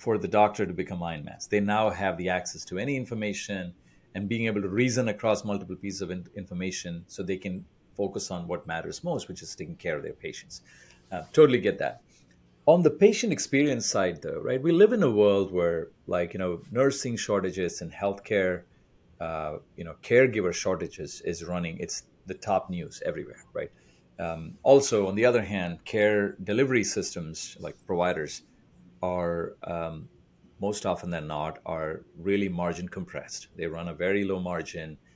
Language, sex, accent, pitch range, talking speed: English, male, Indian, 90-110 Hz, 180 wpm